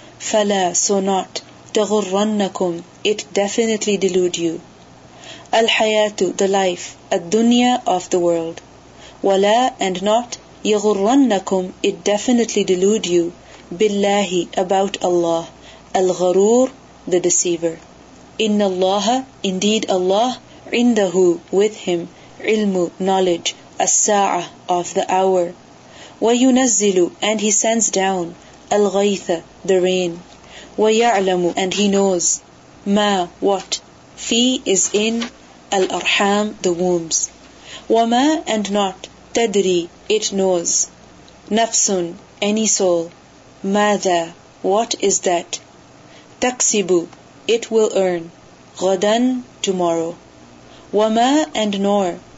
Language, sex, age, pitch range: English, female, 30-49, 180-215 Hz